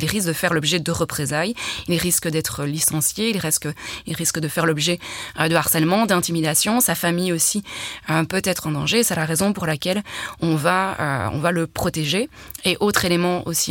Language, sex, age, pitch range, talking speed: French, female, 20-39, 155-185 Hz, 195 wpm